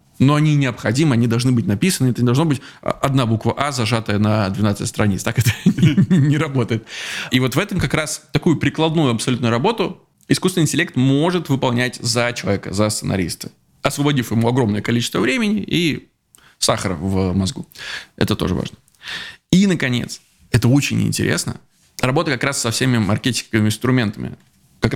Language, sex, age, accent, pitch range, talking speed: Russian, male, 20-39, native, 110-145 Hz, 160 wpm